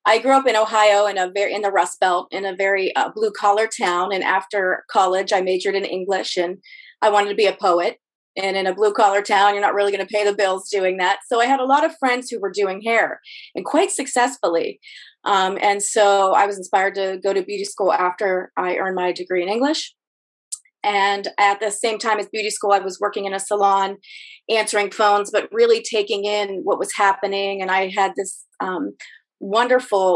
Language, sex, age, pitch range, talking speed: English, female, 30-49, 190-230 Hz, 215 wpm